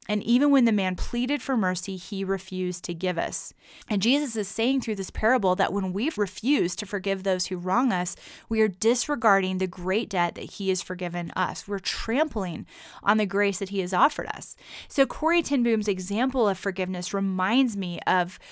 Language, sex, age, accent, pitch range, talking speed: English, female, 30-49, American, 185-230 Hz, 195 wpm